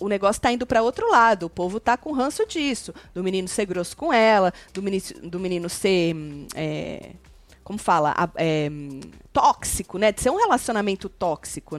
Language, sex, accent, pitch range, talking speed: Portuguese, female, Brazilian, 185-240 Hz, 165 wpm